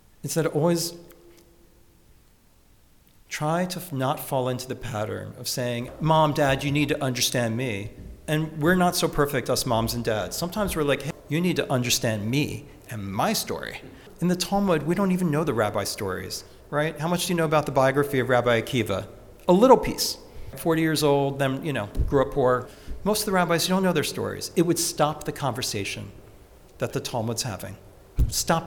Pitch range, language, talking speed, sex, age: 115-150 Hz, English, 195 wpm, male, 40-59